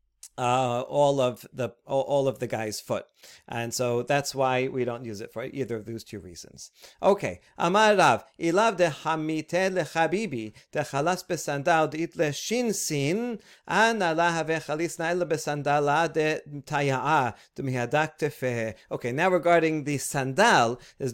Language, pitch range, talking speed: English, 130-170 Hz, 90 wpm